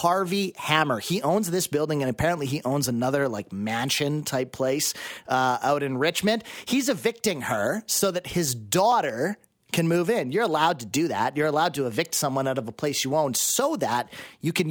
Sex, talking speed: male, 200 wpm